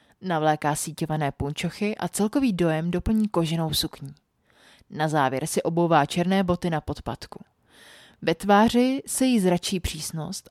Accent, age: native, 30-49